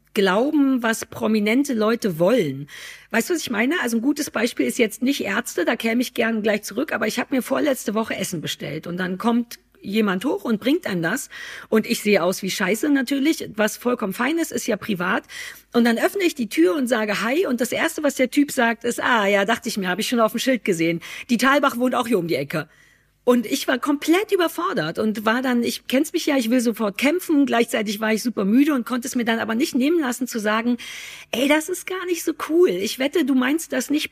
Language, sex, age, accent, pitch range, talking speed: German, female, 50-69, German, 220-285 Hz, 245 wpm